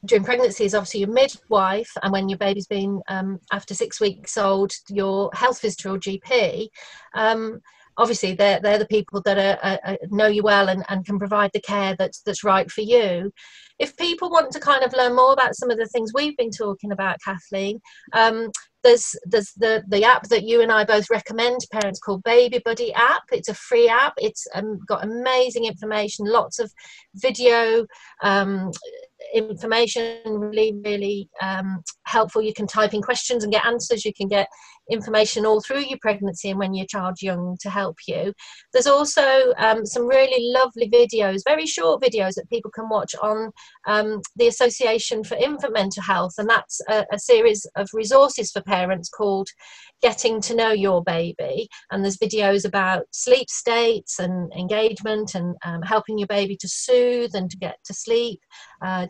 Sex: female